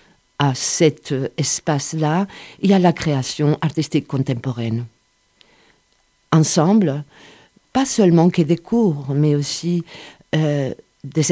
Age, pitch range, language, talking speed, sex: 50-69, 140-180 Hz, French, 100 wpm, female